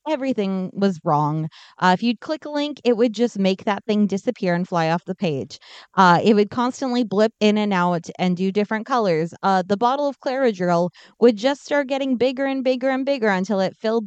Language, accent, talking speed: English, American, 215 wpm